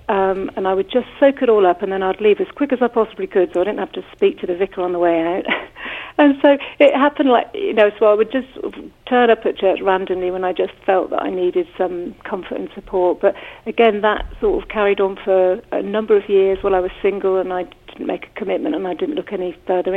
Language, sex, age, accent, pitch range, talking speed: English, female, 50-69, British, 190-235 Hz, 260 wpm